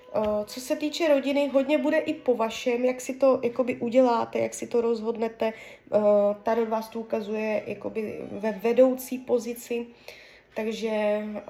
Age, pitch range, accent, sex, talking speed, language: 20-39, 220-270 Hz, native, female, 150 wpm, Czech